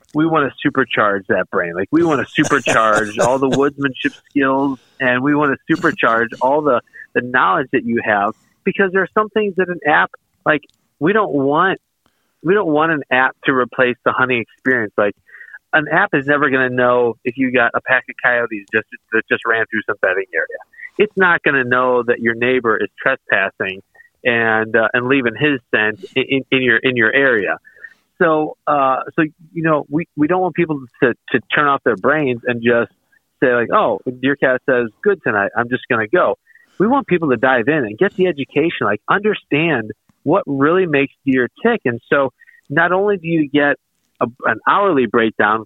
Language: English